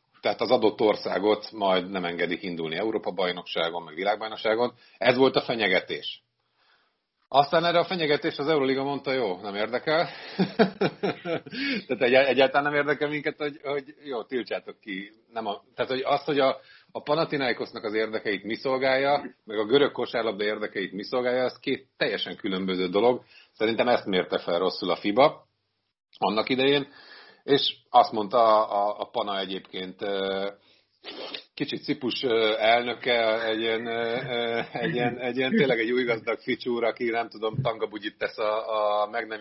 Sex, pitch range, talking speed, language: male, 100-135 Hz, 150 wpm, Hungarian